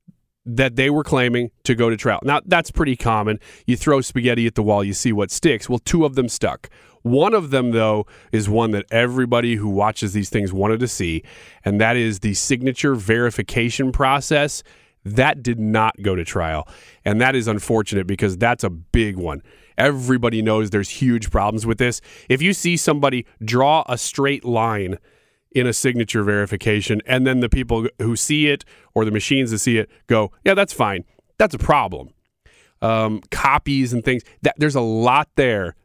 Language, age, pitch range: English, 30-49, 110-140 Hz